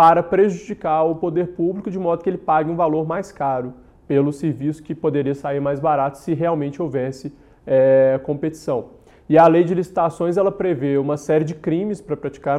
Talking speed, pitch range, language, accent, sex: 180 wpm, 135-165 Hz, Portuguese, Brazilian, male